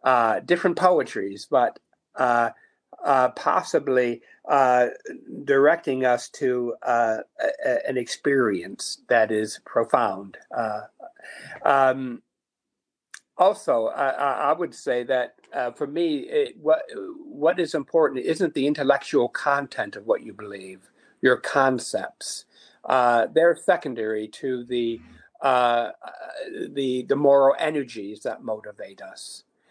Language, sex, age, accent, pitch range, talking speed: English, male, 60-79, American, 120-160 Hz, 115 wpm